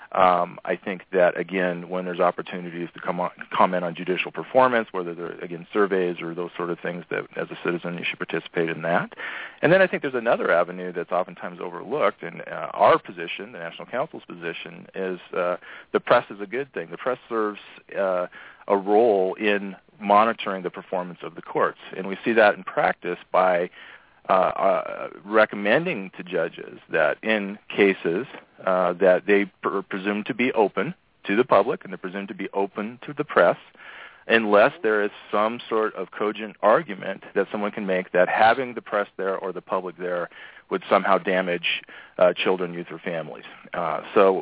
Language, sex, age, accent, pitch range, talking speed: English, male, 40-59, American, 90-105 Hz, 190 wpm